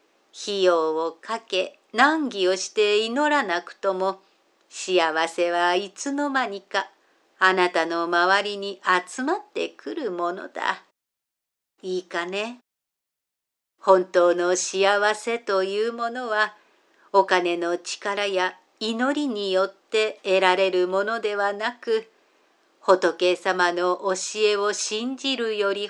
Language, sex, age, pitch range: Japanese, female, 50-69, 190-235 Hz